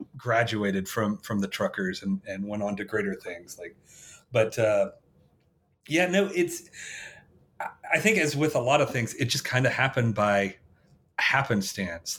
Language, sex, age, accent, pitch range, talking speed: English, male, 40-59, American, 105-135 Hz, 160 wpm